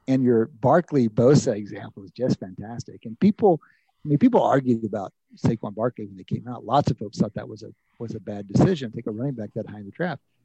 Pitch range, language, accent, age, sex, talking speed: 120-165 Hz, English, American, 50-69, male, 240 wpm